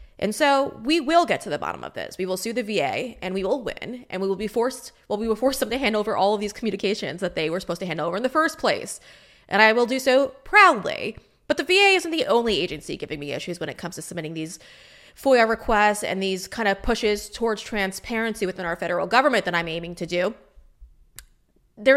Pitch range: 195-270 Hz